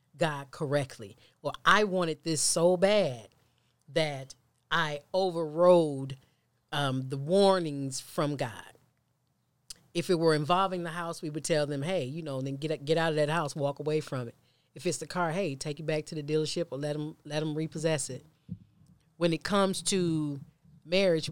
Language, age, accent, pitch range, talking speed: English, 40-59, American, 140-170 Hz, 175 wpm